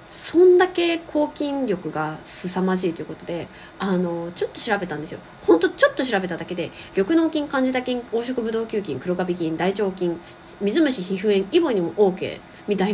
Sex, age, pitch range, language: female, 20-39, 180-280 Hz, Japanese